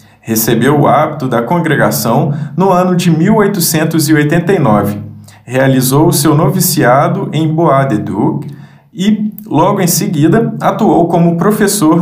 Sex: male